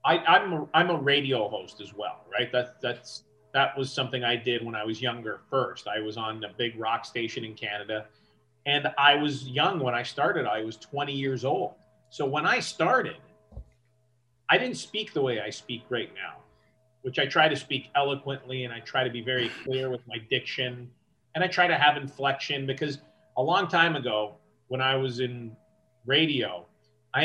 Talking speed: 195 wpm